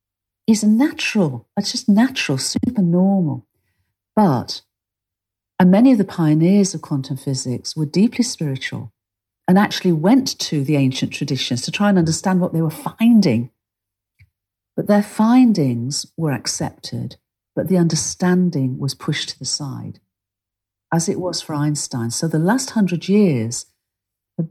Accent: British